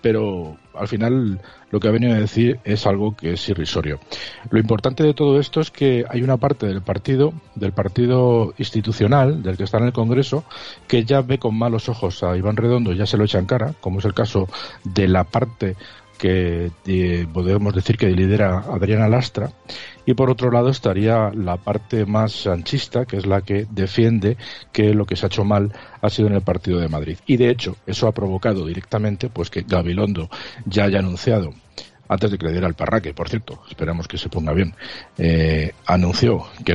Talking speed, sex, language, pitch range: 200 wpm, male, Spanish, 90-115 Hz